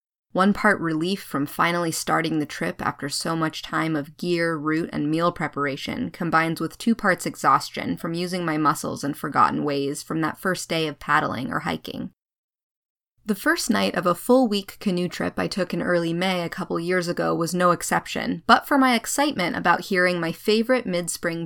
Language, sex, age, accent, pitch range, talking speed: English, female, 20-39, American, 150-190 Hz, 185 wpm